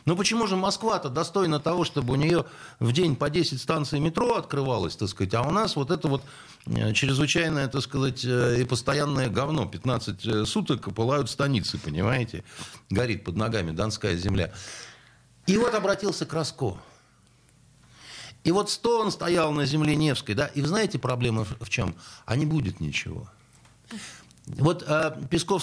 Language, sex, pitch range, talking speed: Russian, male, 120-170 Hz, 155 wpm